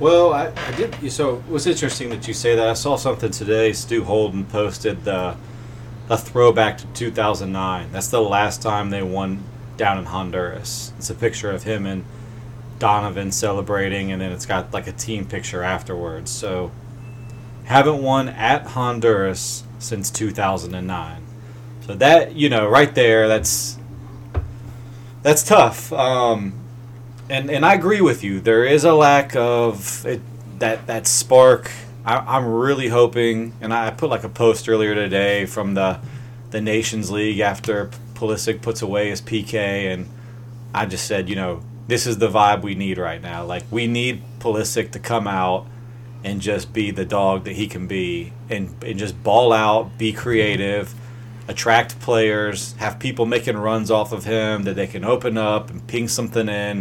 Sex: male